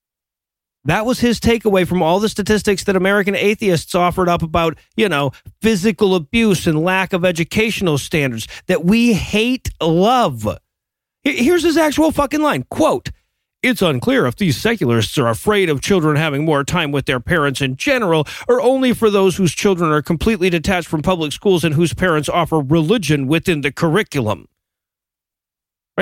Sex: male